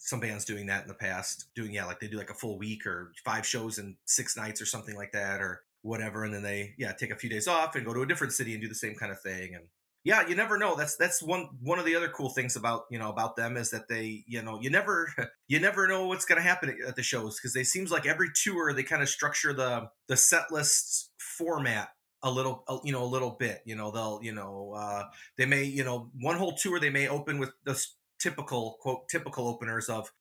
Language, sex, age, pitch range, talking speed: English, male, 30-49, 110-145 Hz, 260 wpm